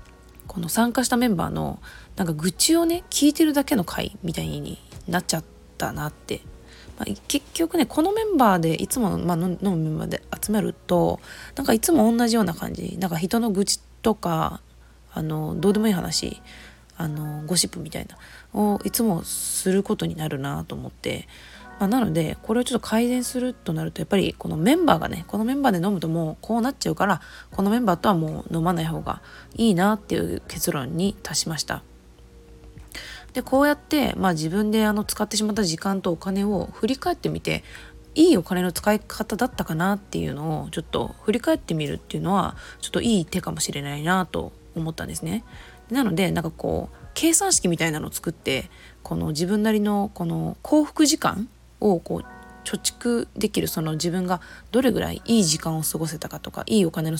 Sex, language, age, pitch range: female, Japanese, 20-39, 160-230 Hz